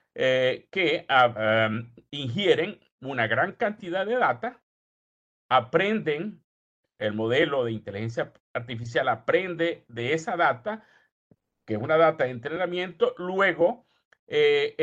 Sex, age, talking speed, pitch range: male, 50-69, 105 wpm, 120-185 Hz